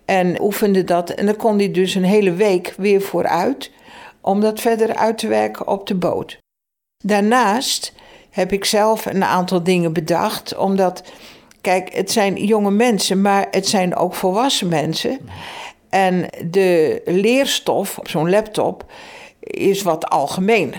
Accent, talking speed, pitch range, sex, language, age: Dutch, 145 wpm, 185-220 Hz, female, Dutch, 60-79